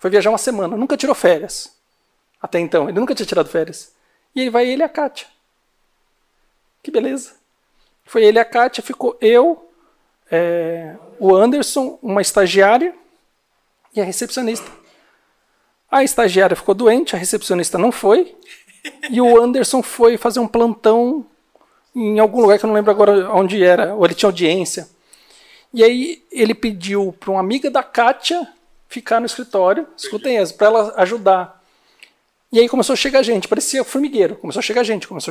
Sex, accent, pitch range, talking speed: male, Brazilian, 195-255 Hz, 165 wpm